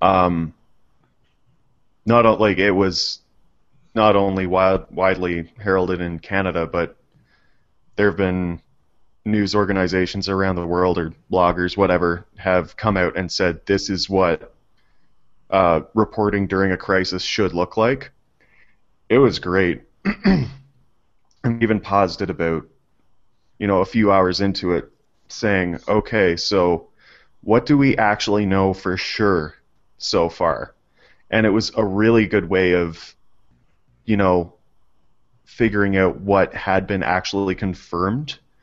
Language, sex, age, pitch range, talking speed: English, male, 20-39, 90-105 Hz, 130 wpm